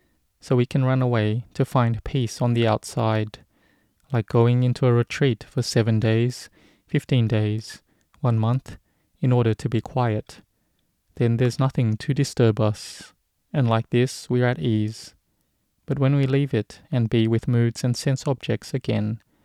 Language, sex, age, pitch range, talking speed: English, male, 20-39, 110-130 Hz, 165 wpm